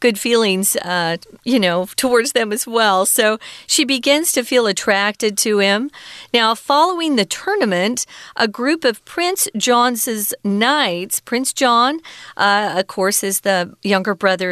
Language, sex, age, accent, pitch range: Chinese, female, 40-59, American, 195-260 Hz